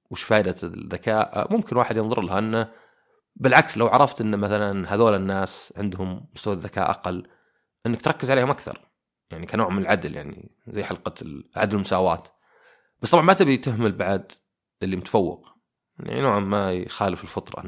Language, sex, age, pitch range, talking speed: Arabic, male, 30-49, 100-125 Hz, 155 wpm